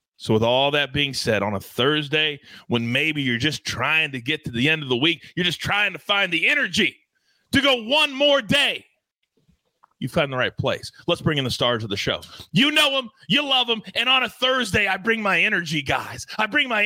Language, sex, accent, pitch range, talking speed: English, male, American, 140-200 Hz, 230 wpm